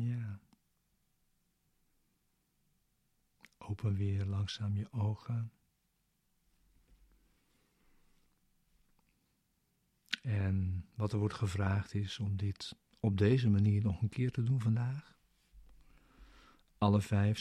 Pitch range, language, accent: 100-110 Hz, Dutch, Dutch